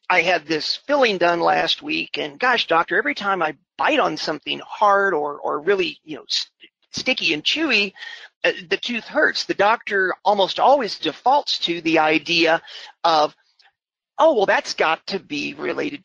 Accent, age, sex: American, 40-59, male